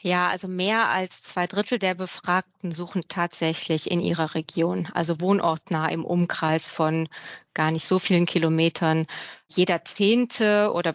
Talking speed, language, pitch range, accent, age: 145 wpm, German, 165-190 Hz, German, 30-49